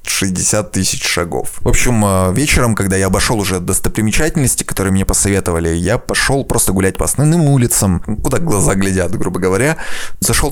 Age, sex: 20-39, male